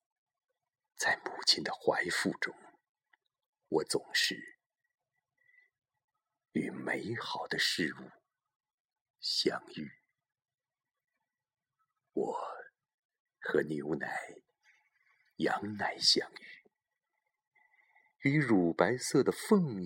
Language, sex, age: Chinese, male, 50-69